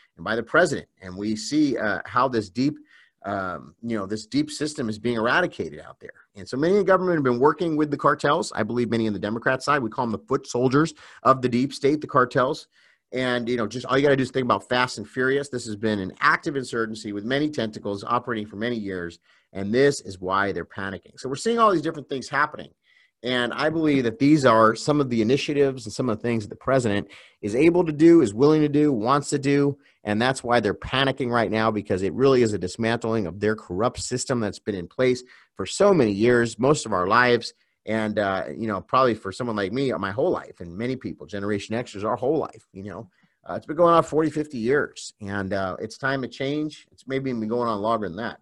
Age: 30-49